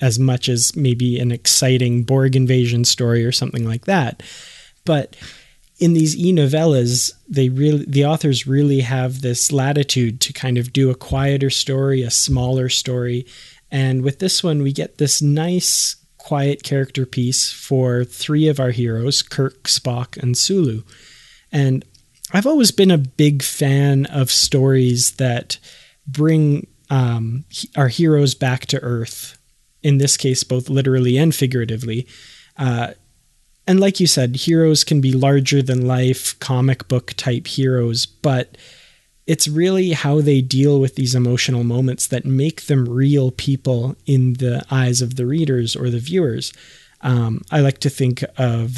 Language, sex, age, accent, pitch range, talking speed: English, male, 20-39, American, 125-140 Hz, 155 wpm